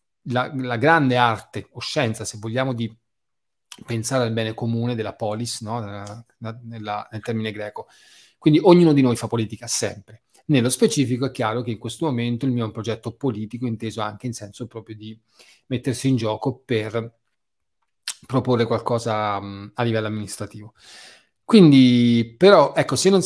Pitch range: 110-135 Hz